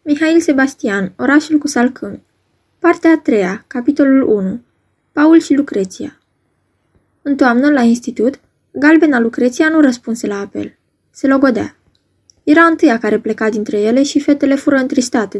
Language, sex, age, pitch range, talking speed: Romanian, female, 20-39, 215-285 Hz, 135 wpm